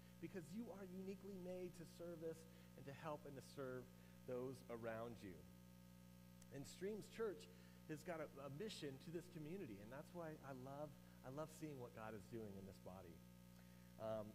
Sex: male